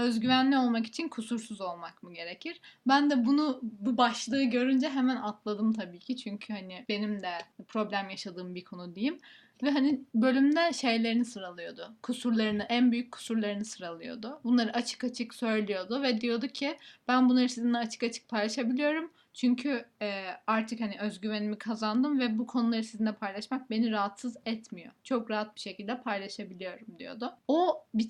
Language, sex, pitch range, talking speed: Turkish, female, 210-255 Hz, 150 wpm